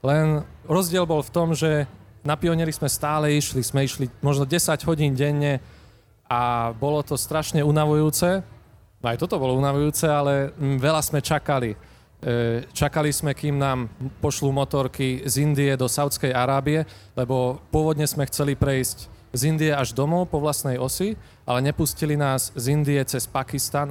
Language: Slovak